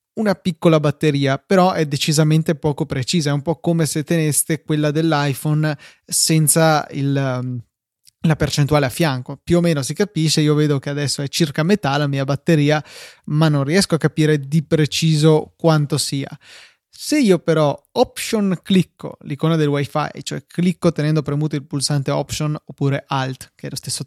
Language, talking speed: Italian, 165 wpm